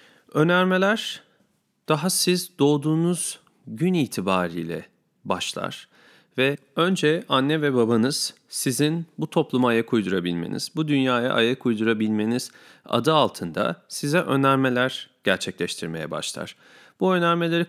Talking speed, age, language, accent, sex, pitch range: 100 wpm, 40-59, Turkish, native, male, 125-165 Hz